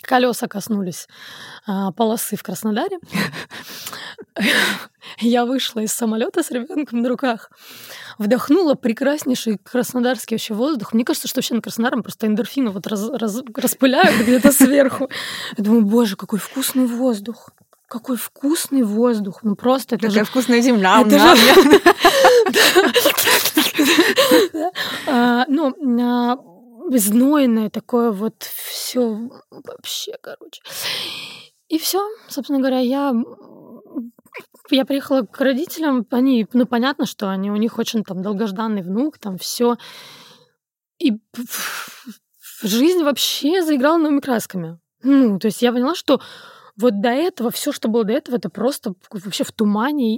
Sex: female